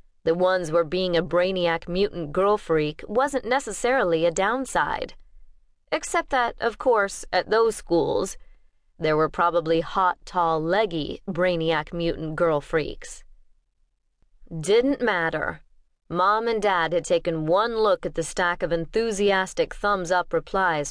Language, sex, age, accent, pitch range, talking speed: English, female, 30-49, American, 170-225 Hz, 130 wpm